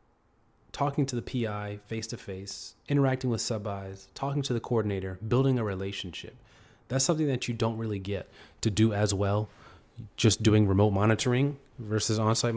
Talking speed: 160 wpm